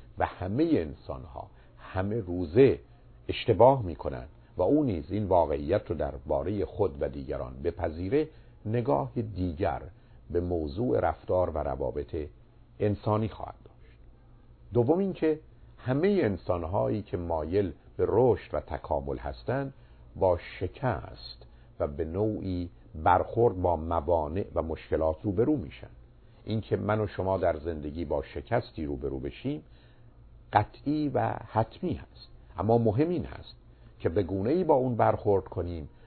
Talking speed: 135 wpm